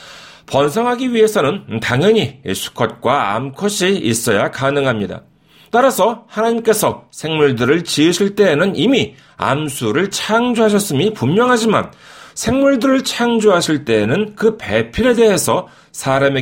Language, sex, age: Korean, male, 40-59